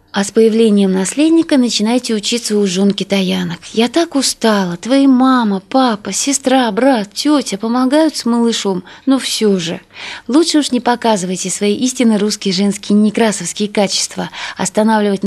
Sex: female